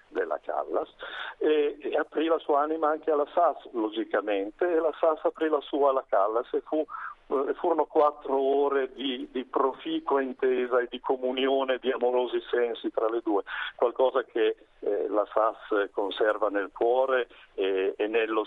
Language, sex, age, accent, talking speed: Italian, male, 50-69, native, 160 wpm